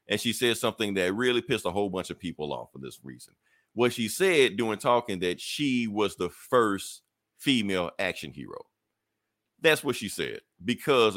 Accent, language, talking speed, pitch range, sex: American, English, 185 wpm, 90-115 Hz, male